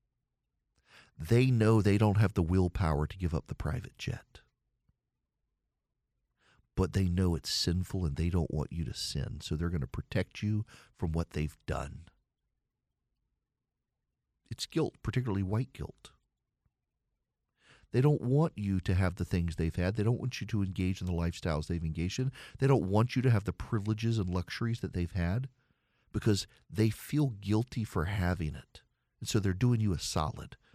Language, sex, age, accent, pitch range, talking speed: English, male, 50-69, American, 90-115 Hz, 175 wpm